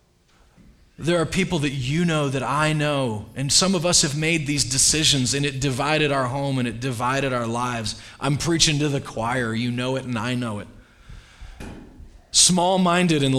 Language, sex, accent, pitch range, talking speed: English, male, American, 105-145 Hz, 185 wpm